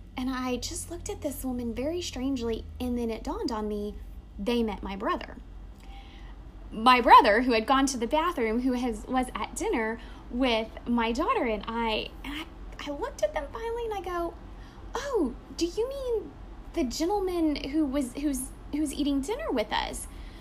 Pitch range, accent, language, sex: 220-315 Hz, American, English, female